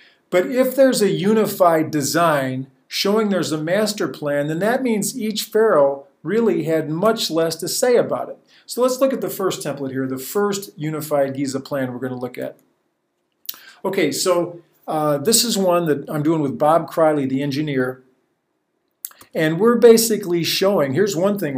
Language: English